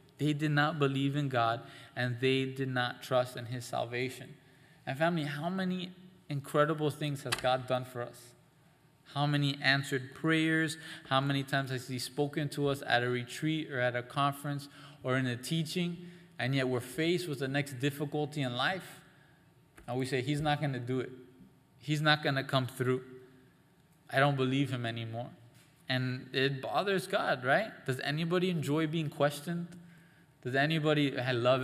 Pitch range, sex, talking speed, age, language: 130-155 Hz, male, 175 wpm, 20-39, English